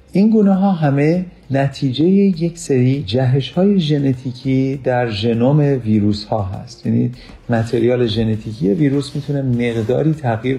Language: Persian